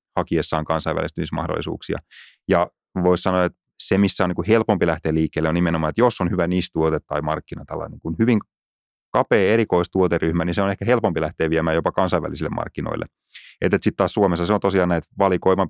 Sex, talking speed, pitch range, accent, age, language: male, 165 wpm, 80-95 Hz, native, 30-49, Finnish